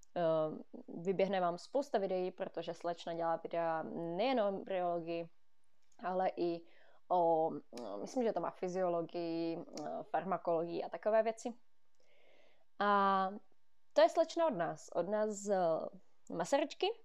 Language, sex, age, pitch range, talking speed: Czech, female, 20-39, 175-225 Hz, 115 wpm